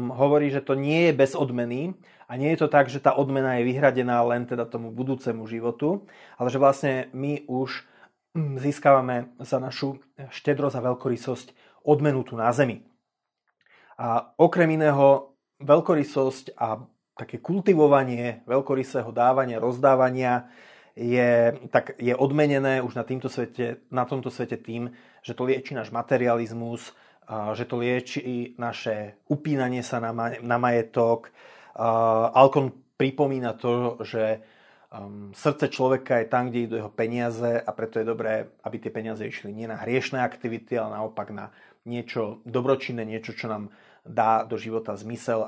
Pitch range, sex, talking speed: 115-135 Hz, male, 140 wpm